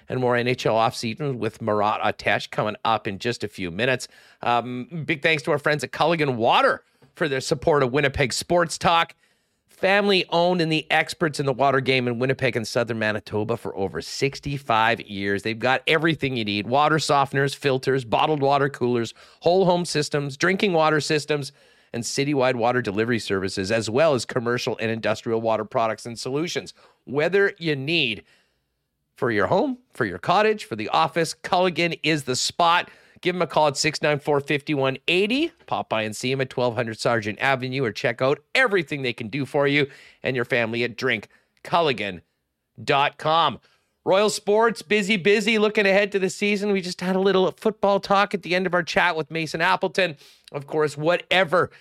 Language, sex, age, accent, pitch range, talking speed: English, male, 40-59, American, 120-170 Hz, 175 wpm